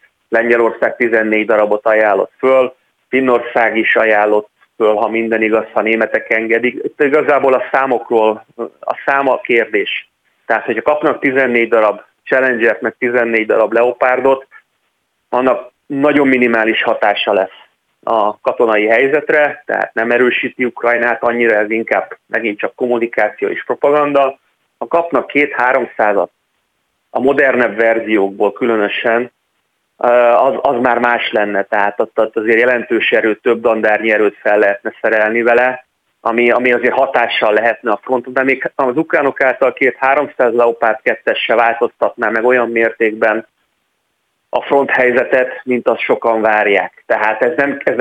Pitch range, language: 110-130 Hz, Hungarian